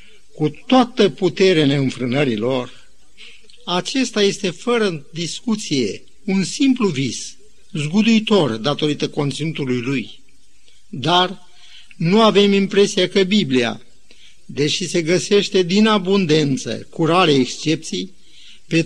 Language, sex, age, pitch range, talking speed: Romanian, male, 50-69, 155-205 Hz, 95 wpm